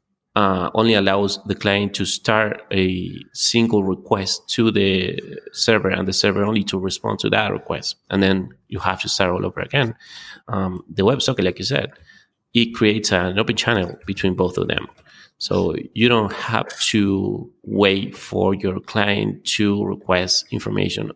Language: English